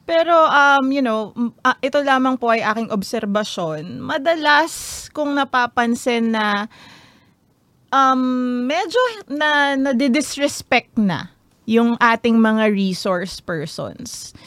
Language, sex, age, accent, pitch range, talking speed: Filipino, female, 20-39, native, 210-255 Hz, 105 wpm